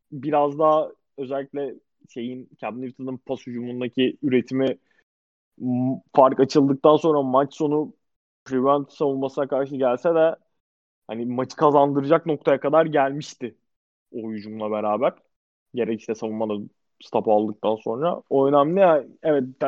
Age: 20-39